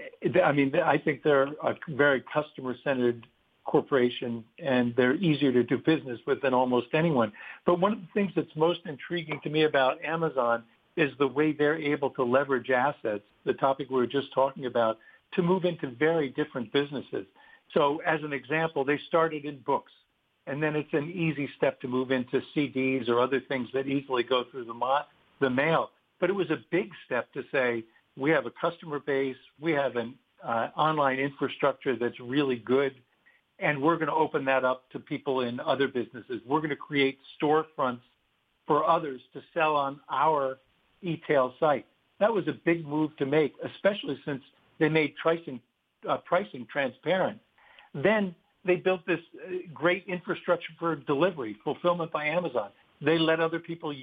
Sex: male